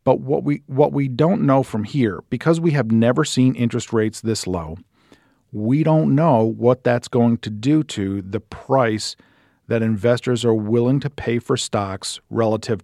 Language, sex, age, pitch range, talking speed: English, male, 50-69, 115-140 Hz, 180 wpm